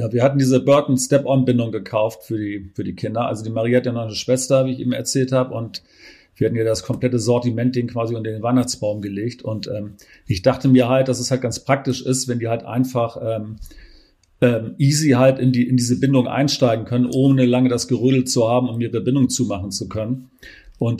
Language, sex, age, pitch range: German, male, 40-59, 115-130 Hz